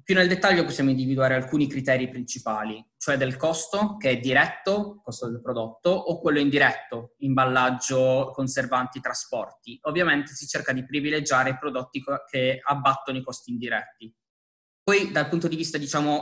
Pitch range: 130-150 Hz